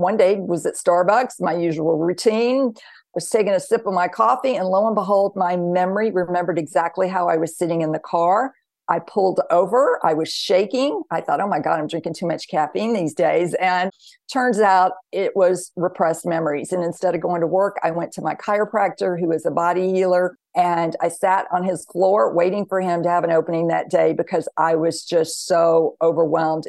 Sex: female